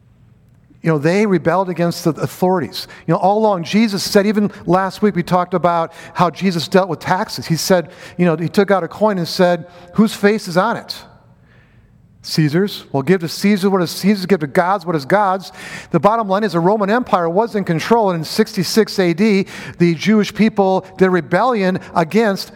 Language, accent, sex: English, American, male